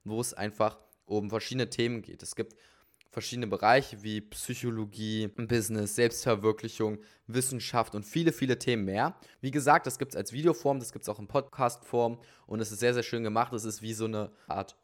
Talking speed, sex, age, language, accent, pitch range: 190 wpm, male, 20-39, German, German, 105-120 Hz